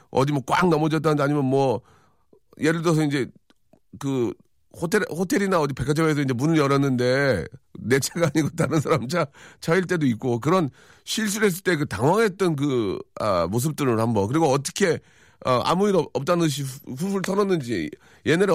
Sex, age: male, 40-59